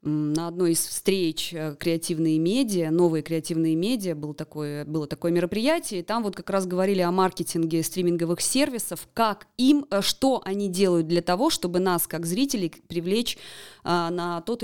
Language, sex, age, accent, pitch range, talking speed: Russian, female, 20-39, native, 170-215 Hz, 150 wpm